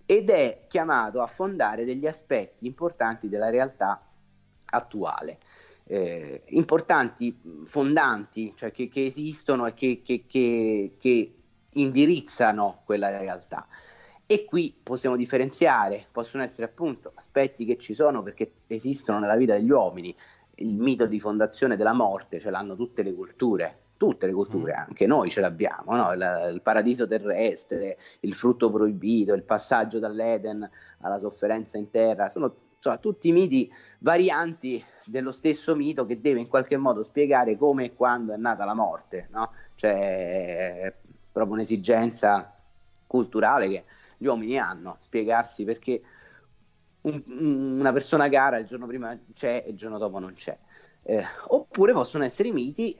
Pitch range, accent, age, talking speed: 110-140 Hz, native, 30-49, 145 wpm